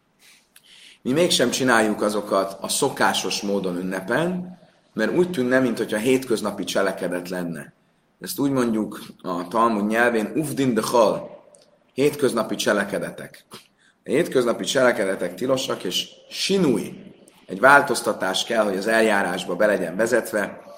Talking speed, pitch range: 115 wpm, 100-125 Hz